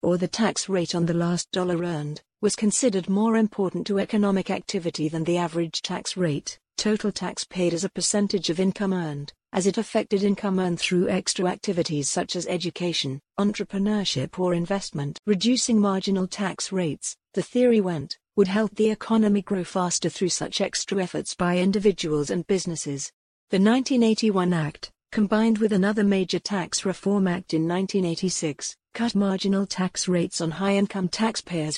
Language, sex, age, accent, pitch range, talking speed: English, female, 50-69, British, 175-205 Hz, 160 wpm